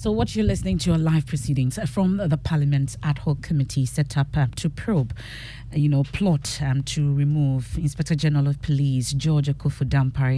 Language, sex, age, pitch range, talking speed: English, female, 40-59, 135-155 Hz, 180 wpm